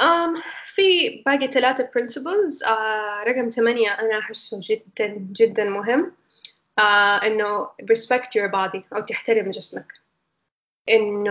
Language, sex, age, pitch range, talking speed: Arabic, female, 10-29, 200-240 Hz, 115 wpm